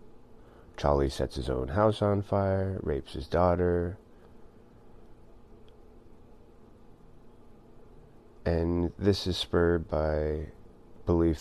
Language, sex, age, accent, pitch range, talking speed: English, male, 30-49, American, 70-85 Hz, 85 wpm